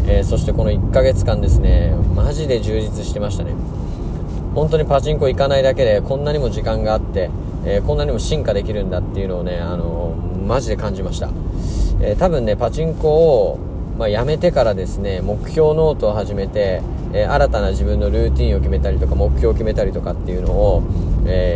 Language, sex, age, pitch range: Japanese, male, 20-39, 85-110 Hz